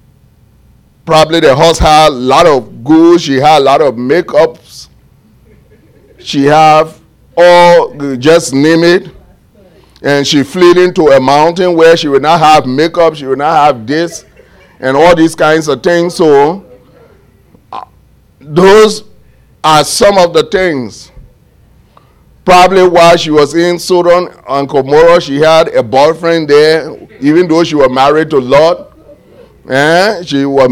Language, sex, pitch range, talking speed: English, male, 145-175 Hz, 145 wpm